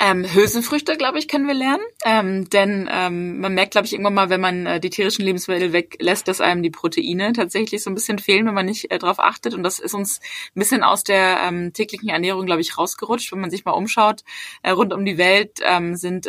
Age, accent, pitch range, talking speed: 20-39, German, 175-205 Hz, 235 wpm